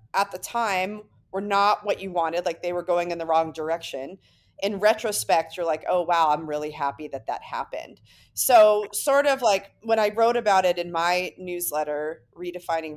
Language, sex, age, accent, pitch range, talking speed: English, female, 30-49, American, 160-205 Hz, 190 wpm